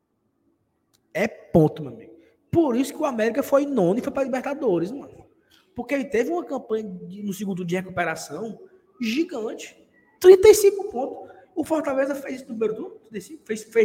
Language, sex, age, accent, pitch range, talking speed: Portuguese, male, 20-39, Brazilian, 170-255 Hz, 155 wpm